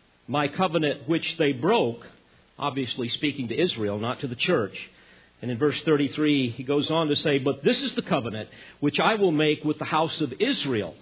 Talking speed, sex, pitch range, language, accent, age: 195 wpm, male, 125-180 Hz, English, American, 50-69